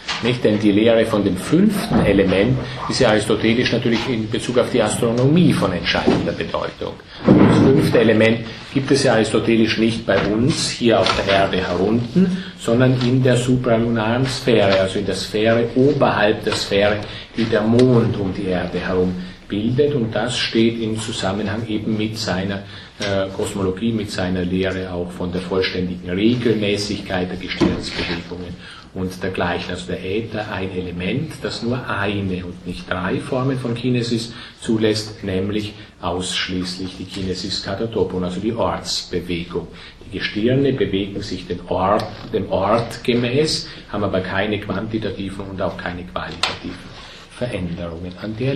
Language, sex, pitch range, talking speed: German, male, 95-120 Hz, 145 wpm